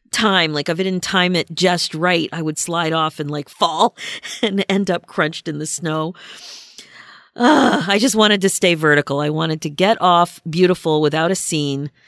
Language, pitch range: English, 150-200 Hz